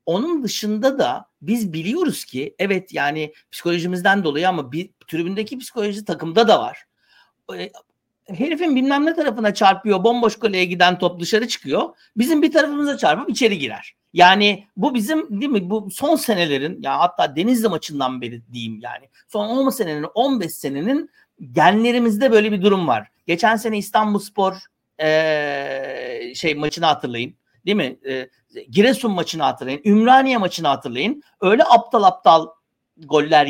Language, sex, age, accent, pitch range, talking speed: Turkish, male, 60-79, native, 175-245 Hz, 140 wpm